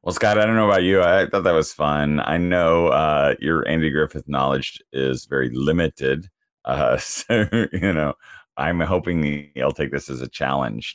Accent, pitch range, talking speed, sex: American, 70-95 Hz, 185 wpm, male